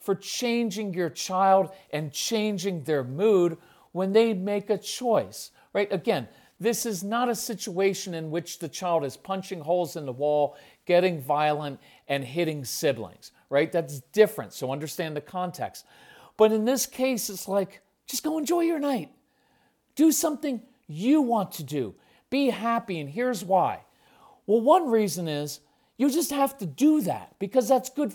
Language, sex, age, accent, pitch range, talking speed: English, male, 50-69, American, 170-230 Hz, 165 wpm